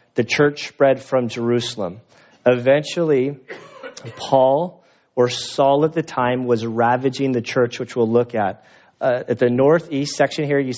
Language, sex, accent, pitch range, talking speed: English, male, American, 125-140 Hz, 150 wpm